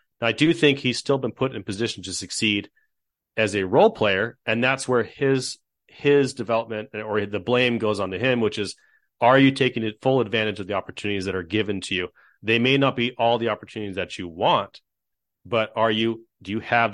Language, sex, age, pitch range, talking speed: English, male, 30-49, 100-115 Hz, 215 wpm